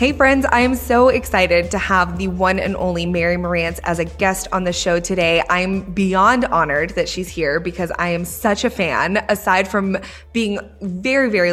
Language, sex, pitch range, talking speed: English, female, 170-195 Hz, 200 wpm